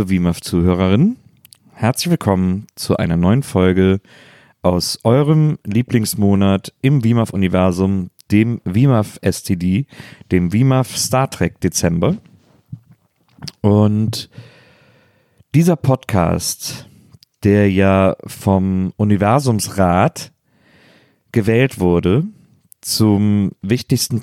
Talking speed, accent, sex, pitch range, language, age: 80 wpm, German, male, 95-130 Hz, German, 40-59